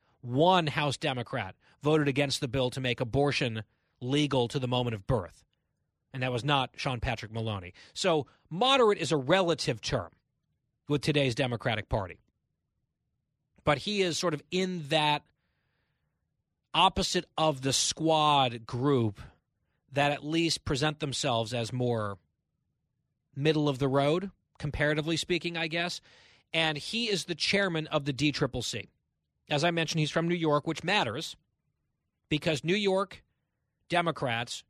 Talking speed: 140 wpm